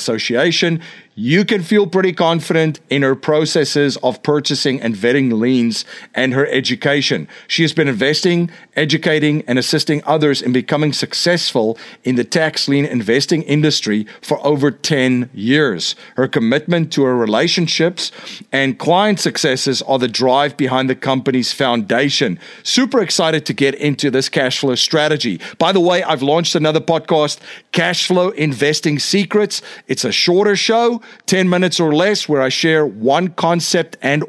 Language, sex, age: English, male, 50-69